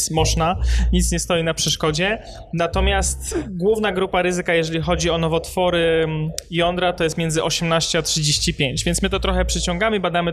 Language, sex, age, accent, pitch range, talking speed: Polish, male, 20-39, native, 155-175 Hz, 155 wpm